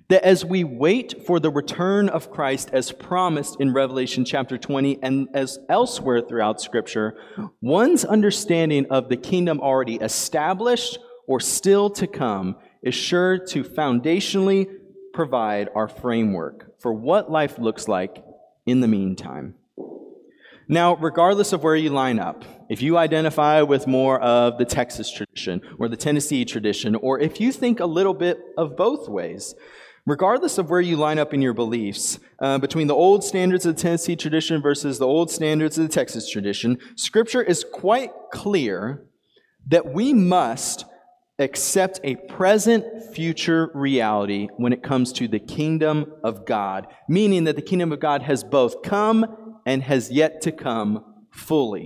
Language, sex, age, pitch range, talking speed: English, male, 30-49, 130-185 Hz, 160 wpm